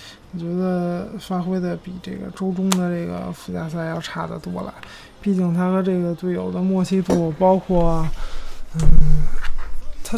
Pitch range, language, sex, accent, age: 175-205 Hz, Chinese, male, Polish, 20-39